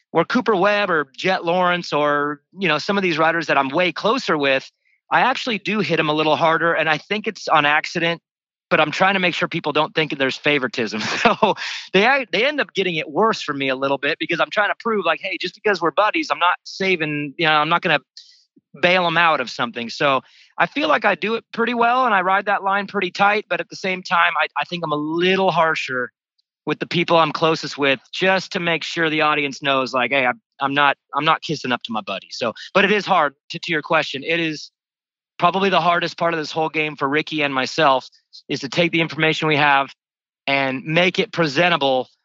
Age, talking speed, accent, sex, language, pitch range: 30-49, 240 wpm, American, male, English, 150-185 Hz